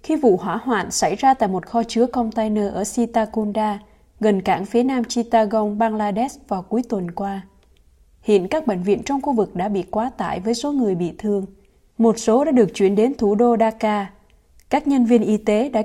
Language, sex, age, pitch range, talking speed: Vietnamese, female, 20-39, 205-245 Hz, 205 wpm